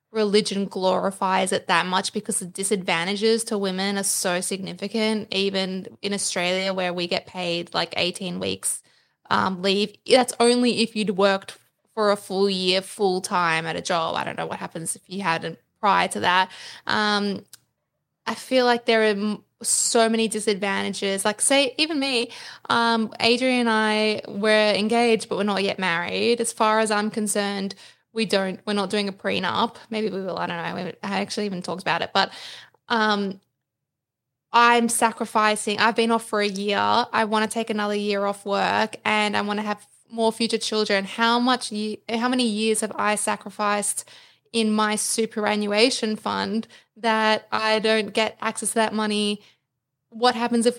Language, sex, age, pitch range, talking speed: English, female, 10-29, 195-225 Hz, 175 wpm